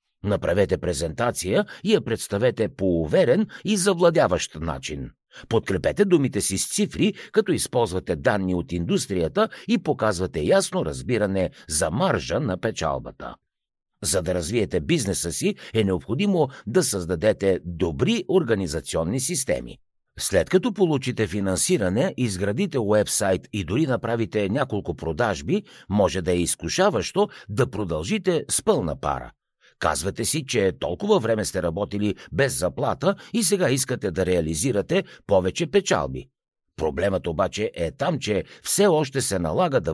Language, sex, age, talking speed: Bulgarian, male, 60-79, 130 wpm